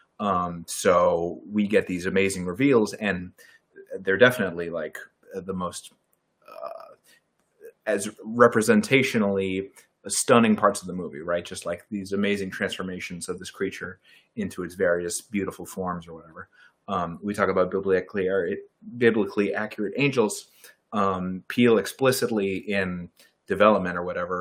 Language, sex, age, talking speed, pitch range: English, male, 30-49, 125 wpm, 90-105 Hz